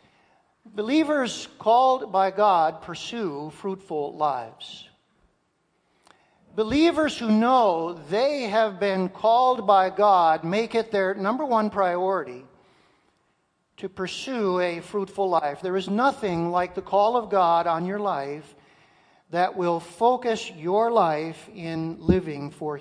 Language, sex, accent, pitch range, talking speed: English, male, American, 180-230 Hz, 120 wpm